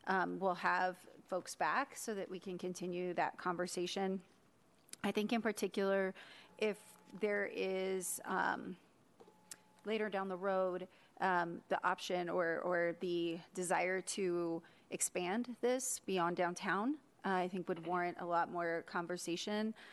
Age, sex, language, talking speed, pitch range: 30-49, female, English, 135 wpm, 175-200 Hz